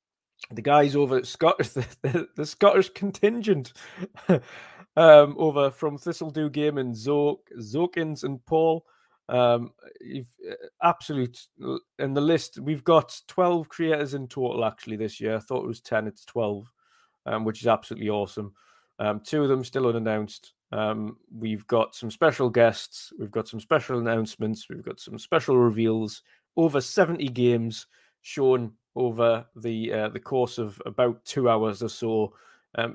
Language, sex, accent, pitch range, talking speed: English, male, British, 110-140 Hz, 160 wpm